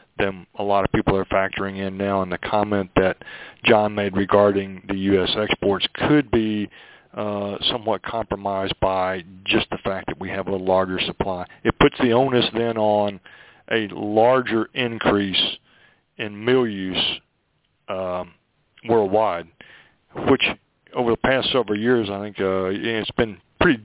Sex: male